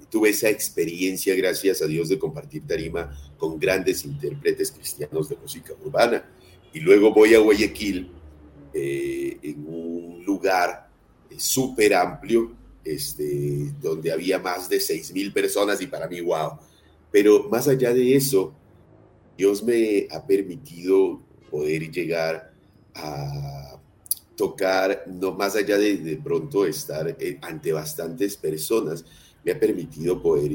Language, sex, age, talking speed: Spanish, male, 40-59, 130 wpm